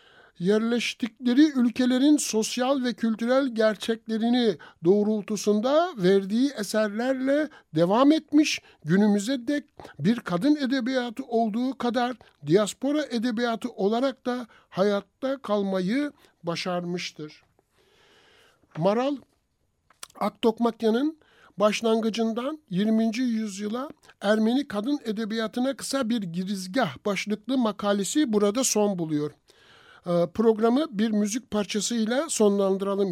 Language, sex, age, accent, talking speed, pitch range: Turkish, male, 60-79, native, 85 wpm, 185-255 Hz